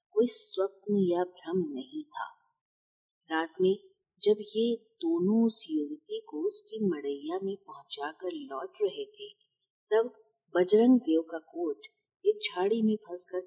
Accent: native